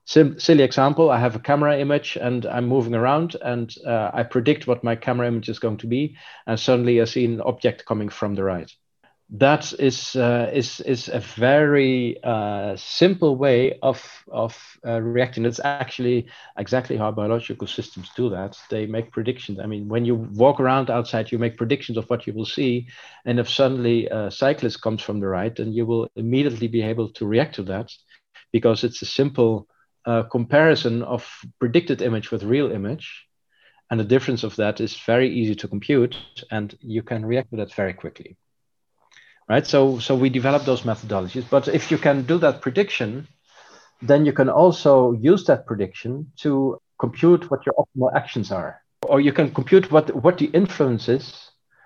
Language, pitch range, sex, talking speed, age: English, 115-135 Hz, male, 185 wpm, 50-69